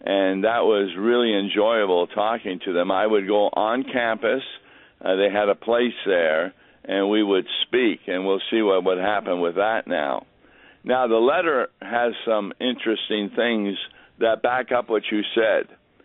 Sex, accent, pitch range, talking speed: male, American, 105-130 Hz, 170 wpm